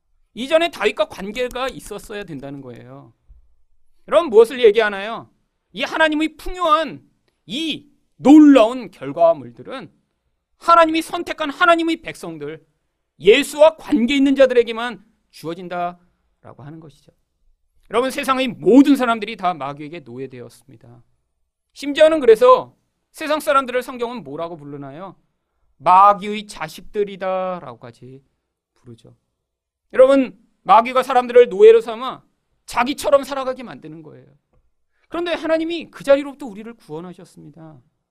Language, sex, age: Korean, male, 40-59